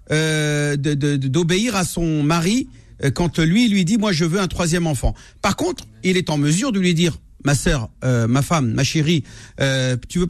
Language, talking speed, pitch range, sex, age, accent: French, 210 wpm, 130-185 Hz, male, 50-69, French